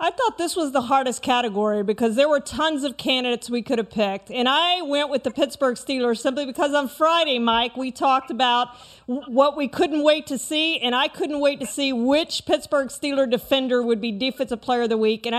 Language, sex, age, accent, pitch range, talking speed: English, female, 40-59, American, 235-285 Hz, 220 wpm